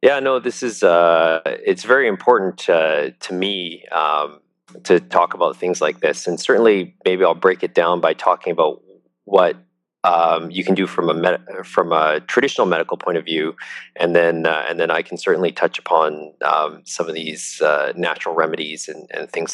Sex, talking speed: male, 195 wpm